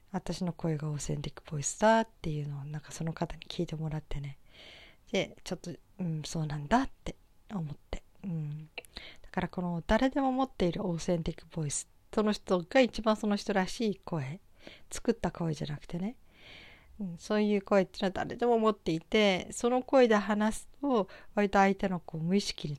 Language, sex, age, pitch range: Japanese, female, 40-59, 165-210 Hz